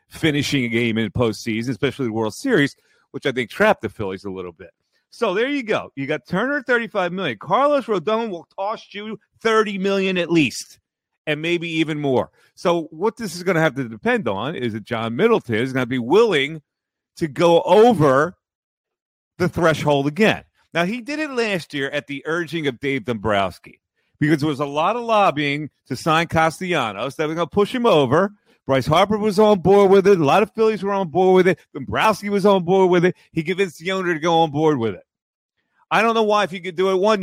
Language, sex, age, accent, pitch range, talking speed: English, male, 40-59, American, 135-200 Hz, 220 wpm